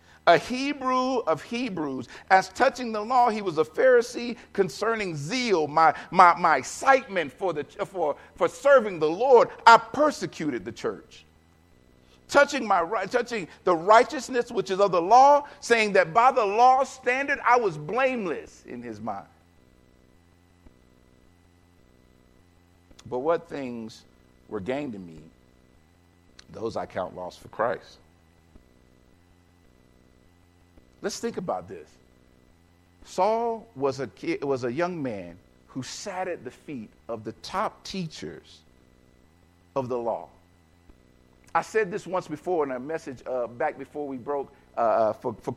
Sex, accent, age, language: male, American, 50-69, English